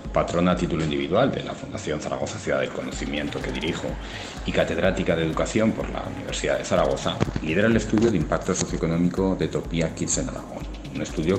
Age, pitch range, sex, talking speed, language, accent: 40-59, 70-95 Hz, male, 185 wpm, Spanish, Spanish